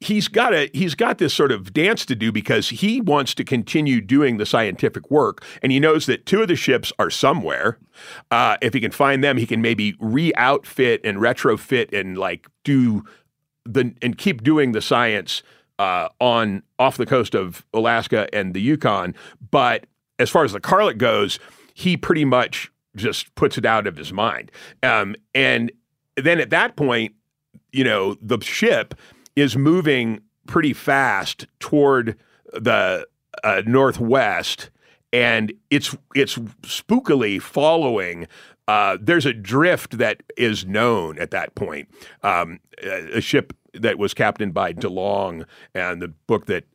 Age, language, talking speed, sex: 50-69, English, 160 wpm, male